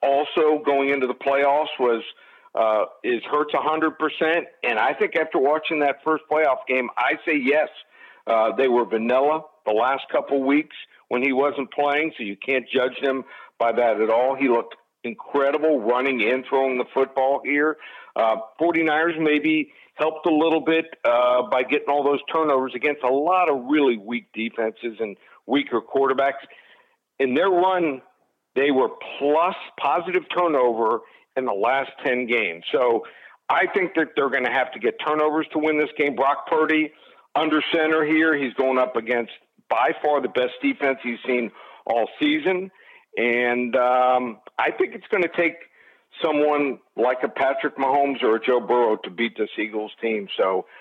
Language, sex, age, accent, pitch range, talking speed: English, male, 50-69, American, 125-155 Hz, 170 wpm